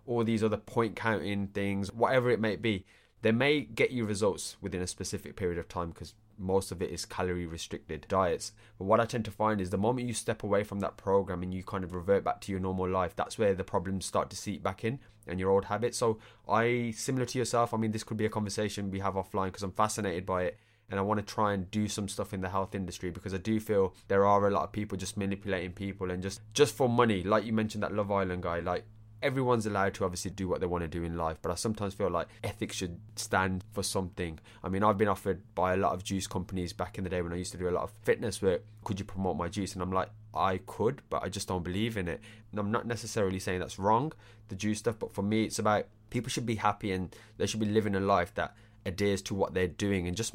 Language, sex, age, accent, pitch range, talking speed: English, male, 20-39, British, 95-110 Hz, 265 wpm